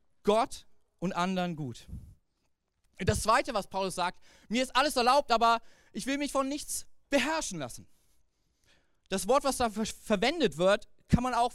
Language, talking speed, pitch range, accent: German, 155 wpm, 185-245 Hz, German